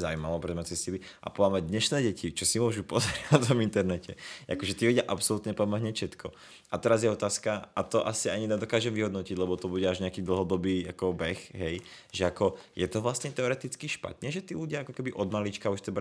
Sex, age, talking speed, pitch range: male, 20-39, 205 wpm, 90-105 Hz